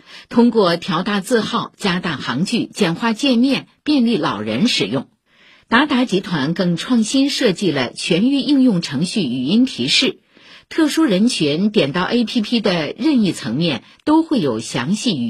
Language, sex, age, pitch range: Chinese, female, 50-69, 180-260 Hz